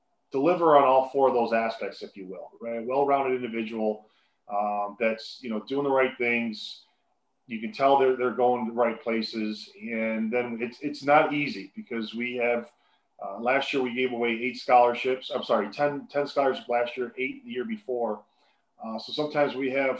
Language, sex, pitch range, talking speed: English, male, 115-130 Hz, 190 wpm